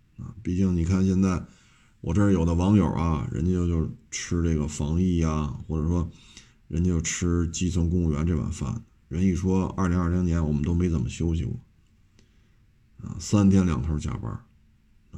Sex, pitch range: male, 85-110 Hz